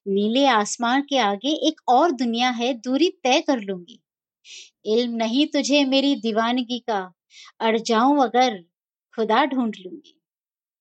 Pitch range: 225-300 Hz